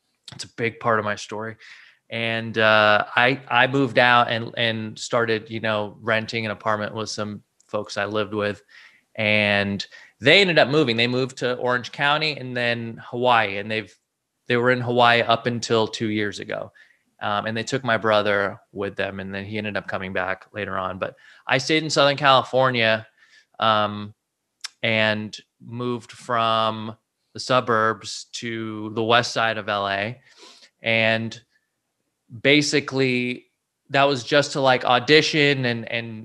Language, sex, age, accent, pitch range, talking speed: English, male, 20-39, American, 105-125 Hz, 160 wpm